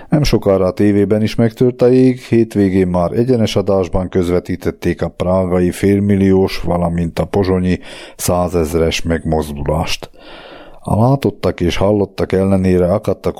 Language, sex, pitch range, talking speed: Hungarian, male, 85-100 Hz, 120 wpm